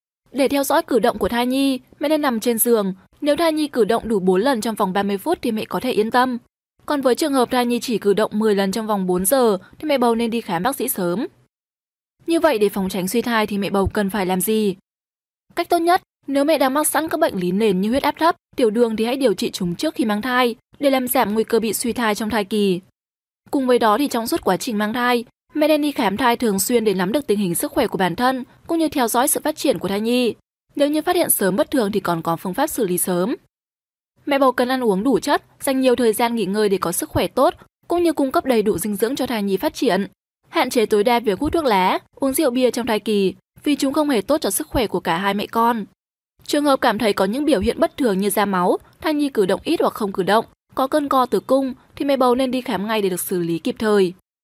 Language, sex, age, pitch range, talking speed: Vietnamese, female, 20-39, 205-280 Hz, 285 wpm